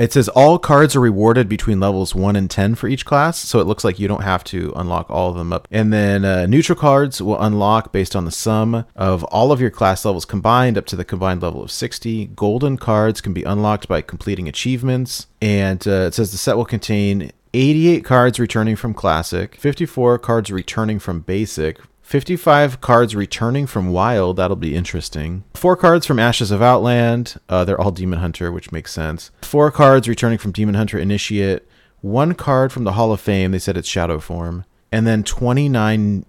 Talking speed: 200 wpm